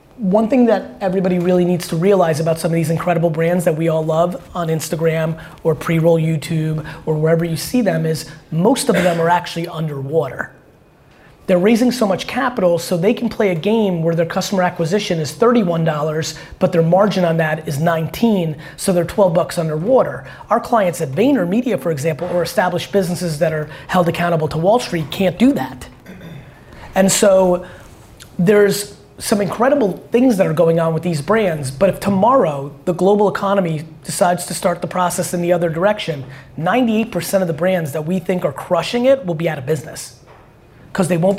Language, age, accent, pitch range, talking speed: English, 30-49, American, 160-195 Hz, 185 wpm